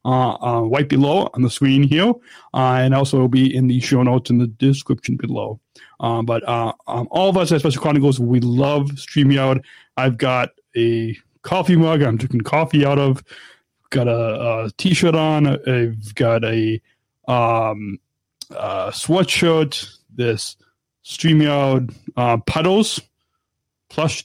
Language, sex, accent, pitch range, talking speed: English, male, American, 120-140 Hz, 150 wpm